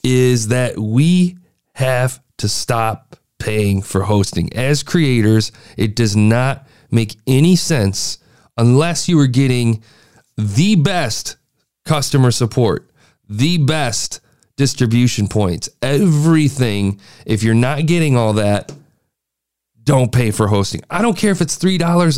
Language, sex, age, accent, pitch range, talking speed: English, male, 40-59, American, 110-150 Hz, 120 wpm